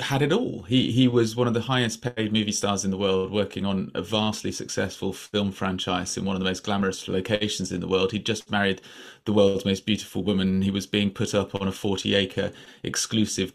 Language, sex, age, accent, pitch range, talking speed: English, male, 30-49, British, 95-110 Hz, 225 wpm